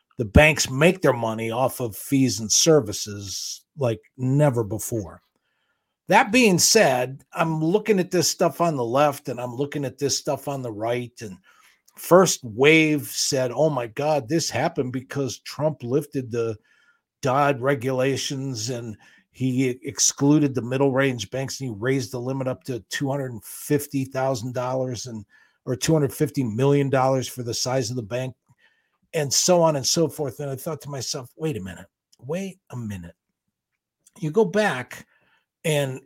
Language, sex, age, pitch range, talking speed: English, male, 50-69, 120-155 Hz, 170 wpm